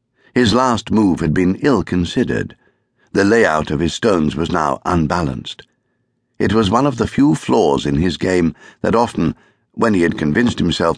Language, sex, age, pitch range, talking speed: English, male, 60-79, 80-120 Hz, 175 wpm